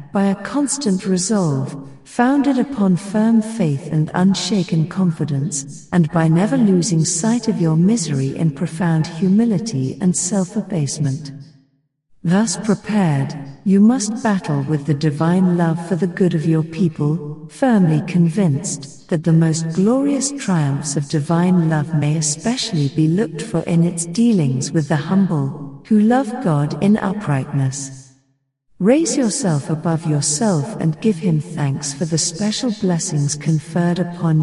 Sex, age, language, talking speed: female, 60-79, English, 140 wpm